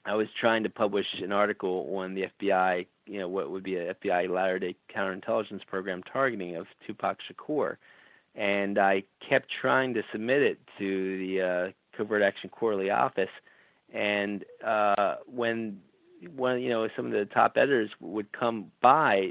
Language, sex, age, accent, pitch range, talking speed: English, male, 40-59, American, 95-110 Hz, 160 wpm